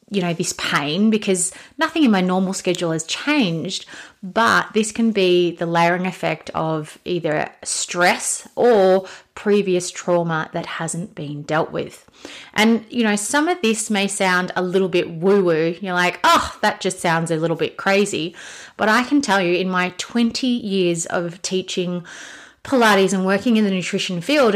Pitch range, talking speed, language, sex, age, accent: 170-210 Hz, 175 wpm, English, female, 30-49, Australian